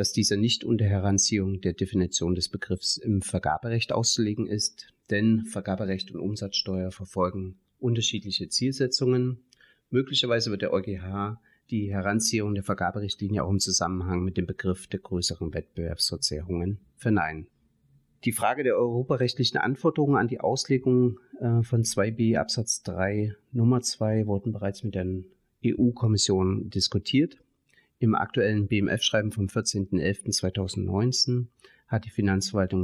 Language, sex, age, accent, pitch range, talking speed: English, male, 30-49, German, 95-115 Hz, 120 wpm